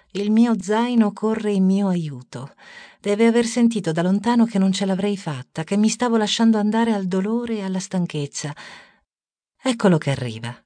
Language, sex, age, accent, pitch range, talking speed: Italian, female, 50-69, native, 125-190 Hz, 170 wpm